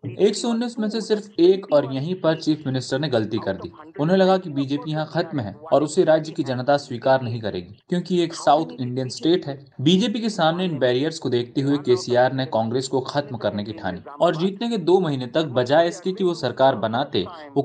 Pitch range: 130-175 Hz